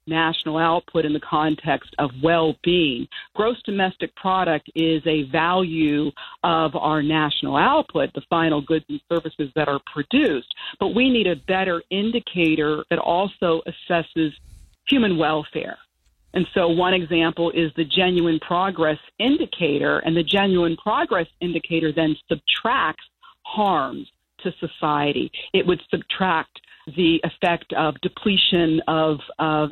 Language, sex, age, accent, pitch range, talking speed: English, female, 50-69, American, 155-185 Hz, 130 wpm